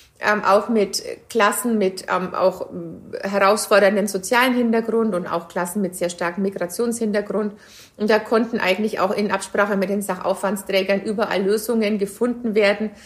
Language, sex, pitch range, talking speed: German, female, 205-240 Hz, 145 wpm